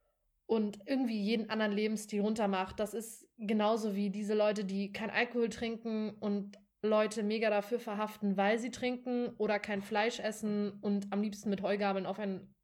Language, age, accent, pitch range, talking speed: German, 20-39, German, 200-230 Hz, 165 wpm